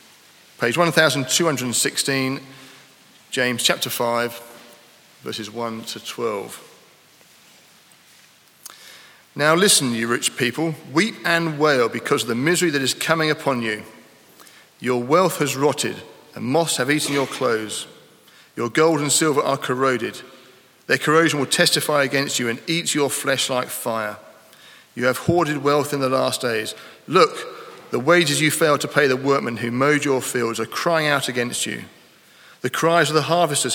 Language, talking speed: English, 155 wpm